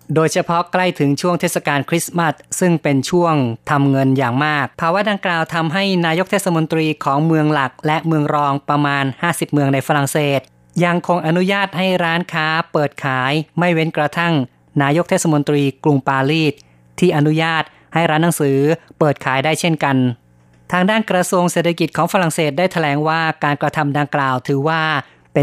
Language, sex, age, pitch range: Thai, female, 20-39, 140-165 Hz